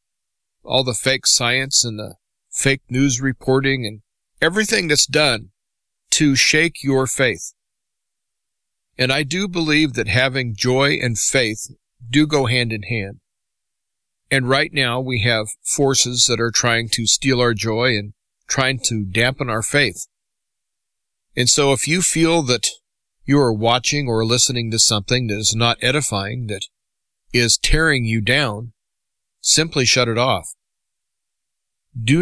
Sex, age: male, 40-59